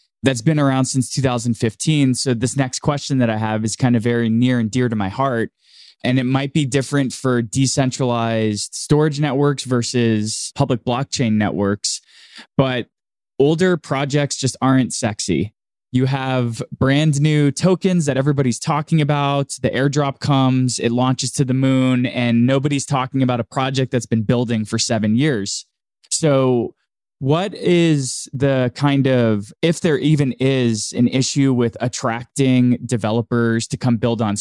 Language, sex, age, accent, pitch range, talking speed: English, male, 20-39, American, 120-140 Hz, 155 wpm